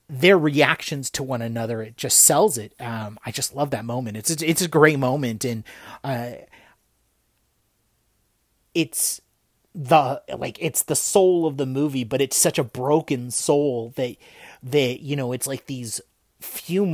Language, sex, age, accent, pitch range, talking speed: English, male, 30-49, American, 125-155 Hz, 160 wpm